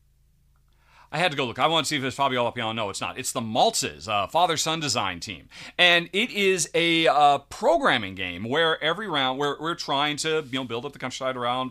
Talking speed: 225 wpm